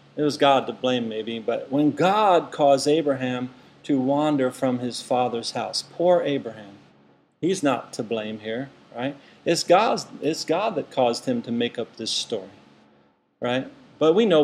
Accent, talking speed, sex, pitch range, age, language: American, 165 wpm, male, 125-155 Hz, 40-59, English